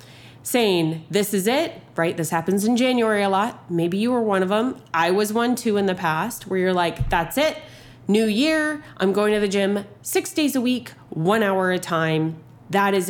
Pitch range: 155-225 Hz